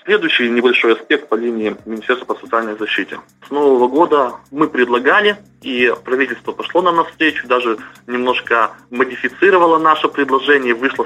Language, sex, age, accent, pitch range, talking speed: Russian, male, 20-39, native, 120-165 Hz, 135 wpm